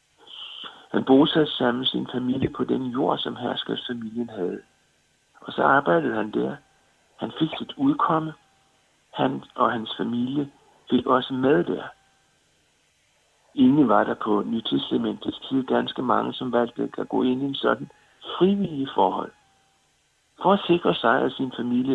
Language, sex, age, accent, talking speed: Danish, male, 60-79, native, 150 wpm